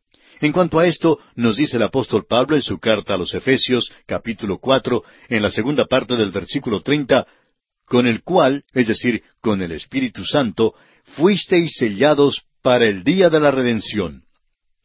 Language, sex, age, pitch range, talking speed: Spanish, male, 60-79, 110-150 Hz, 165 wpm